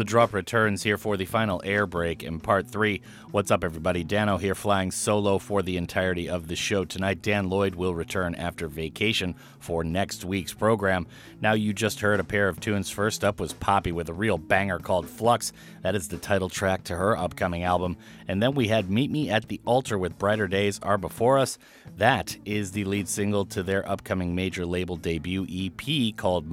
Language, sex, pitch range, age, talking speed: English, male, 90-110 Hz, 30-49, 205 wpm